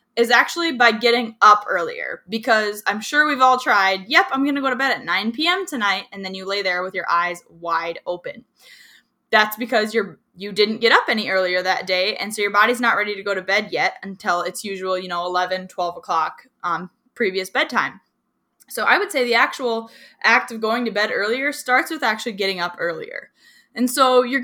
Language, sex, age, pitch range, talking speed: English, female, 10-29, 190-240 Hz, 215 wpm